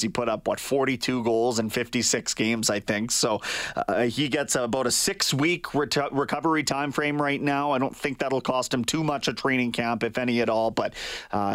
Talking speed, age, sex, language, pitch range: 215 wpm, 30-49, male, English, 120-160 Hz